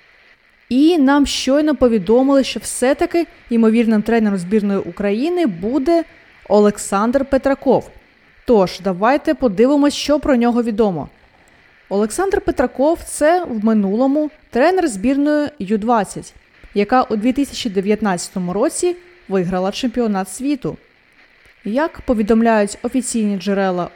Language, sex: Ukrainian, female